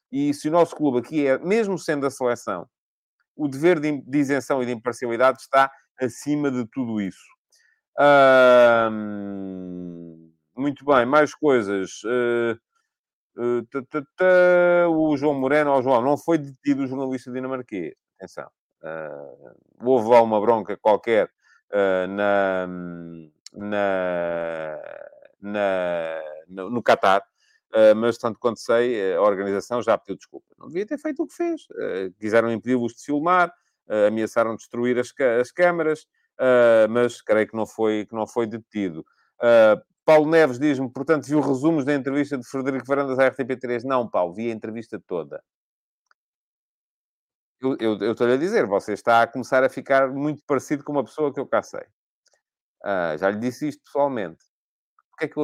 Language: English